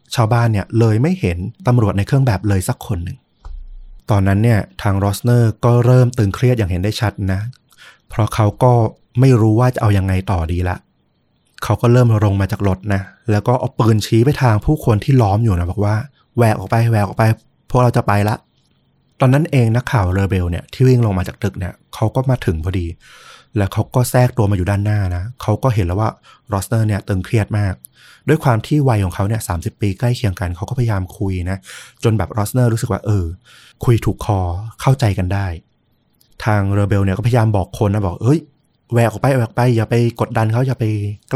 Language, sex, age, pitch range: Thai, male, 20-39, 100-125 Hz